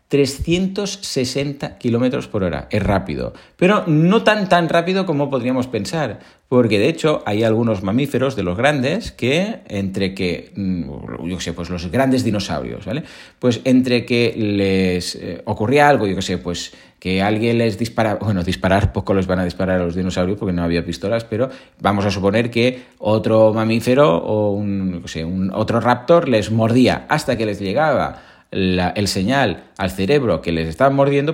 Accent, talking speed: Spanish, 170 wpm